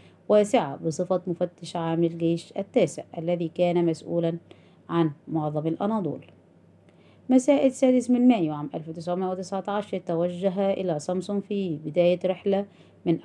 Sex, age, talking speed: female, 30-49, 115 wpm